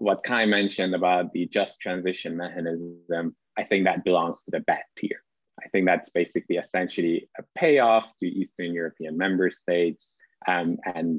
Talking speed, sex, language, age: 160 wpm, male, English, 20-39